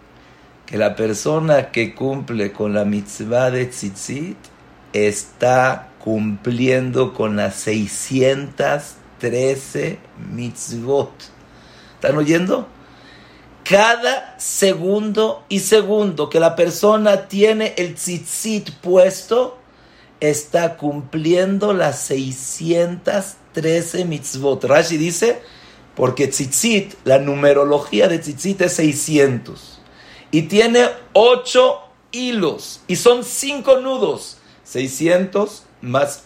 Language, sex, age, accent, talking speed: English, male, 50-69, Mexican, 90 wpm